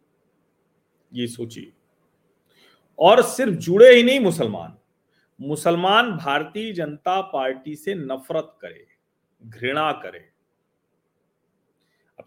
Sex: male